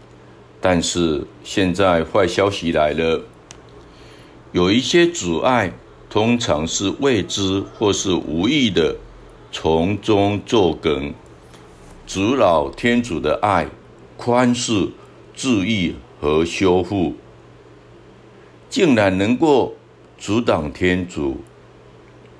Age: 60-79